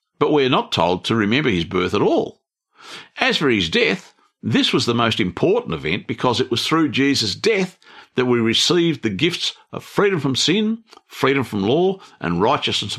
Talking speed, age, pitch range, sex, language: 185 wpm, 50-69, 100-160 Hz, male, English